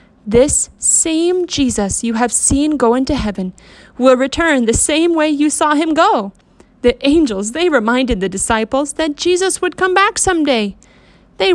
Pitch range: 230-325 Hz